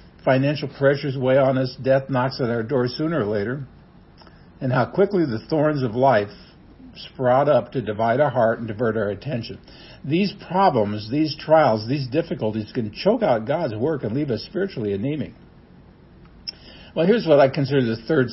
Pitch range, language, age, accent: 115-150 Hz, English, 60-79, American